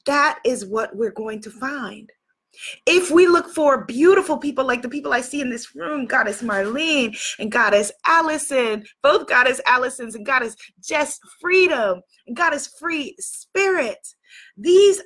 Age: 20-39